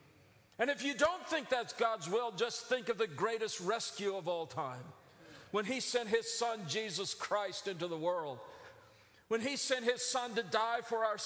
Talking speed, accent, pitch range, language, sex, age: 190 wpm, American, 165-255 Hz, English, male, 50-69